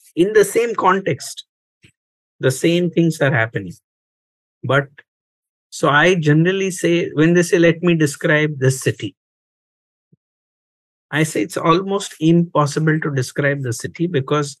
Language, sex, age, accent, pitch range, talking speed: English, male, 50-69, Indian, 125-170 Hz, 130 wpm